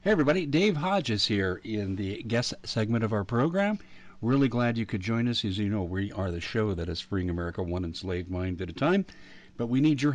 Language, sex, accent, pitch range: English, male, American, 95-130 Hz